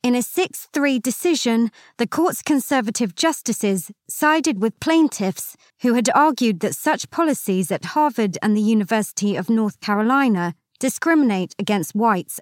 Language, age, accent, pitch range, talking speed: English, 30-49, British, 195-265 Hz, 135 wpm